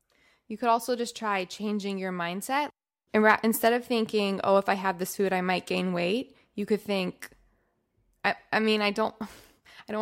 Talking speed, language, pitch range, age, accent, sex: 185 wpm, English, 165-210 Hz, 20-39, American, female